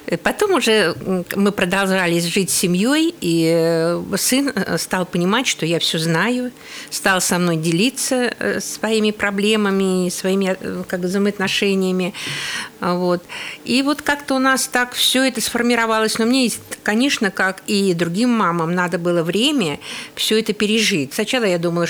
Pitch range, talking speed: 180-215 Hz, 135 wpm